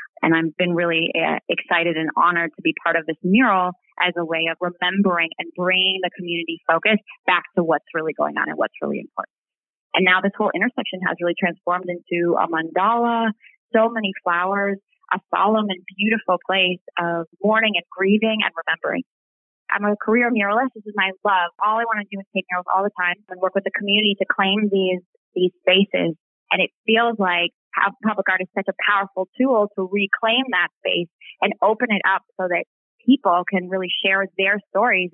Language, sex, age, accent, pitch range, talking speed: English, female, 20-39, American, 175-205 Hz, 195 wpm